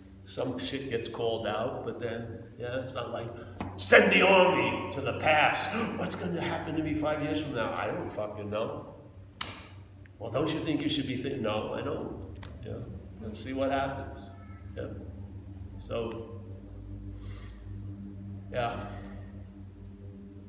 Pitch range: 100-110 Hz